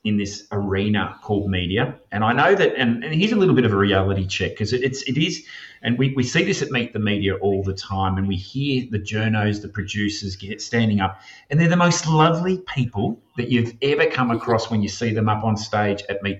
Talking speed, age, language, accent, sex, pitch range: 240 wpm, 30-49, English, Australian, male, 105-130 Hz